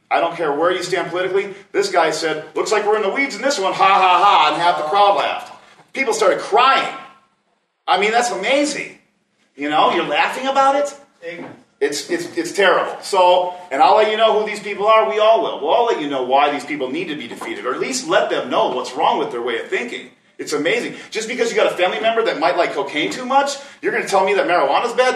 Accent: American